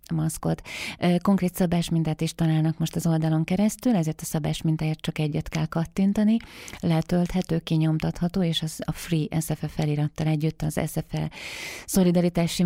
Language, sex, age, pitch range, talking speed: Hungarian, female, 30-49, 160-175 Hz, 135 wpm